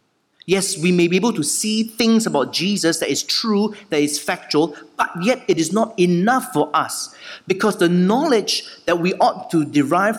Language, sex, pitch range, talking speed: English, male, 145-210 Hz, 190 wpm